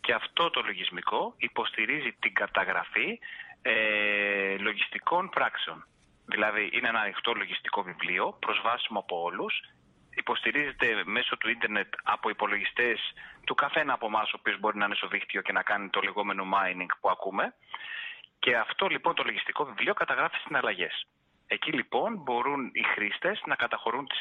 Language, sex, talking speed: Greek, male, 150 wpm